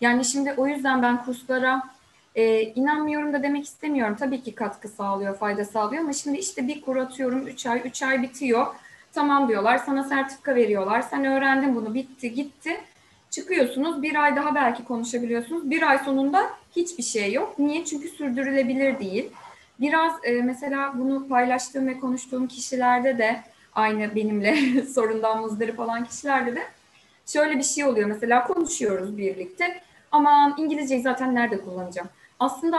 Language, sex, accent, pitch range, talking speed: Turkish, female, native, 225-275 Hz, 150 wpm